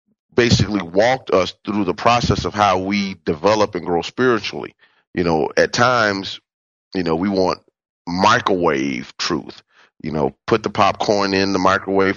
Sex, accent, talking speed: male, American, 155 wpm